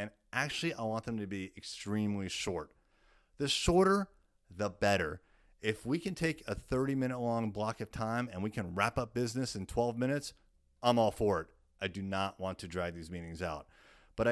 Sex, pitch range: male, 95-125 Hz